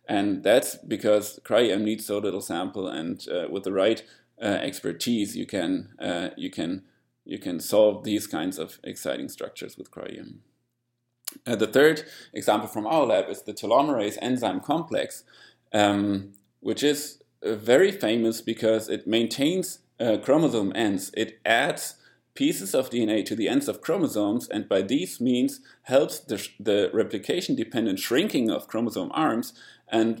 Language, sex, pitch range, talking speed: English, male, 105-150 Hz, 155 wpm